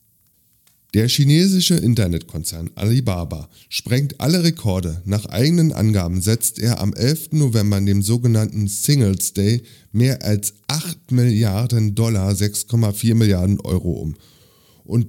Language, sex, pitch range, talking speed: German, male, 100-130 Hz, 115 wpm